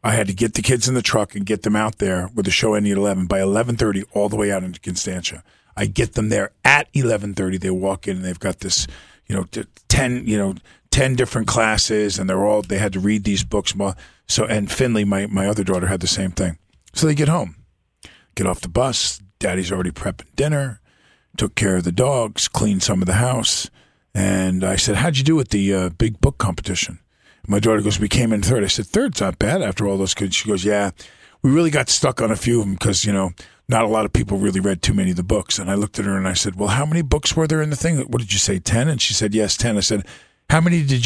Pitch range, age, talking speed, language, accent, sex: 95-125 Hz, 40-59, 260 wpm, English, American, male